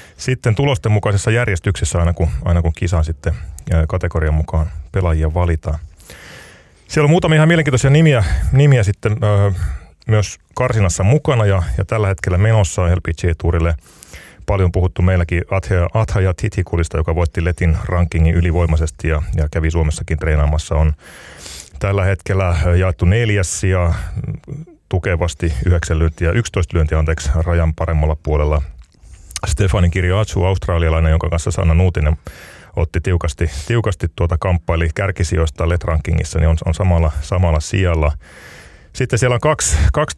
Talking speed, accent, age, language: 135 wpm, native, 30-49, Finnish